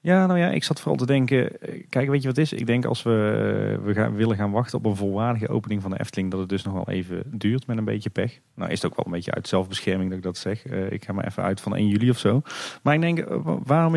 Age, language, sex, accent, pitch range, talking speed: 40-59, Dutch, male, Dutch, 95-125 Hz, 290 wpm